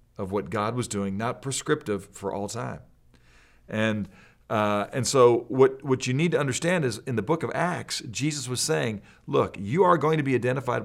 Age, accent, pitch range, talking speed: 40-59, American, 100-135 Hz, 200 wpm